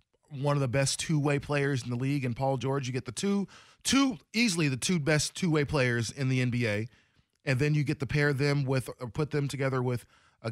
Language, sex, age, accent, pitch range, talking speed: English, male, 20-39, American, 125-150 Hz, 240 wpm